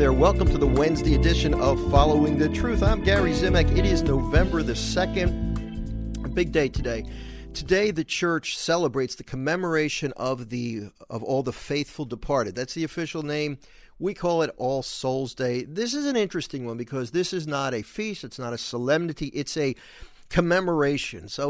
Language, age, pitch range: English, 50-69, 120-155 Hz